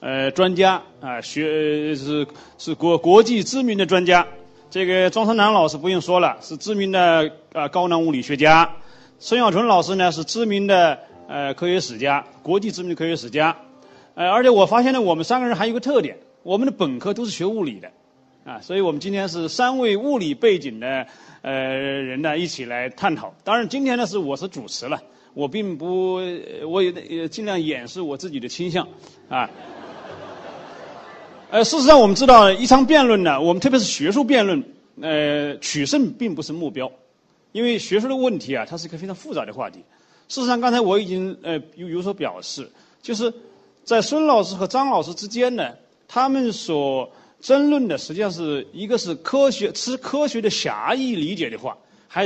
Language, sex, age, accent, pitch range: Chinese, male, 30-49, native, 160-235 Hz